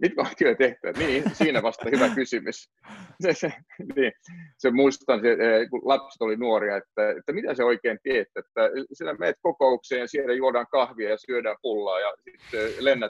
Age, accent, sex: 30-49, native, male